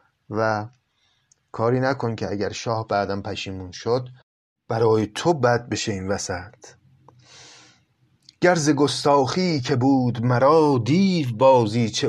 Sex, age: male, 30-49